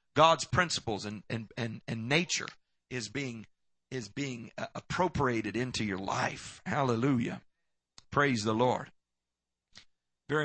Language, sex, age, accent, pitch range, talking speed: English, male, 50-69, American, 100-150 Hz, 100 wpm